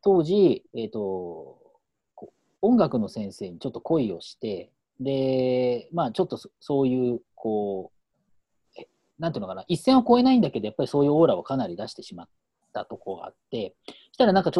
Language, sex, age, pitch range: Japanese, male, 40-59, 125-195 Hz